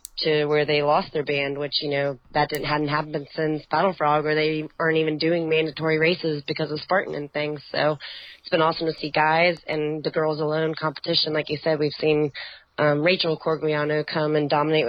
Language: English